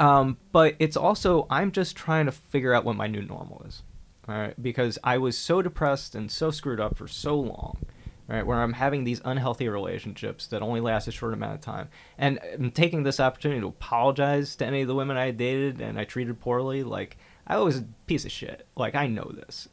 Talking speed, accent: 220 wpm, American